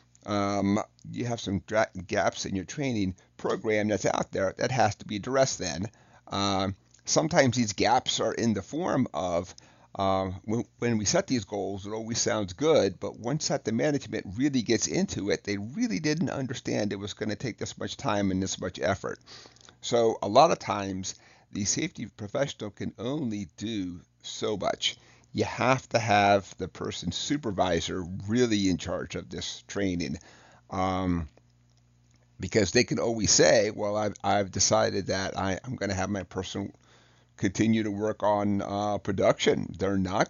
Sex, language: male, English